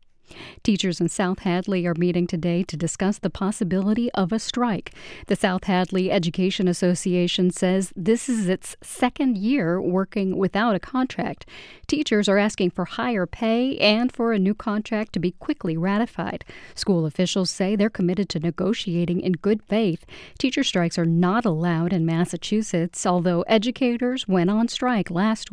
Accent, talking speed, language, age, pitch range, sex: American, 155 wpm, English, 50-69, 180-225 Hz, female